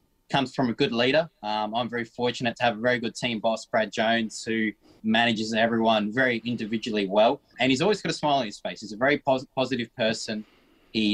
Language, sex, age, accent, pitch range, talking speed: English, male, 20-39, Australian, 110-135 Hz, 215 wpm